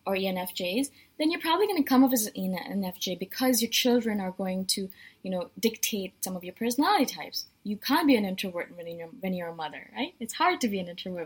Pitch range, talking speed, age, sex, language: 195-260 Hz, 235 wpm, 20-39, female, English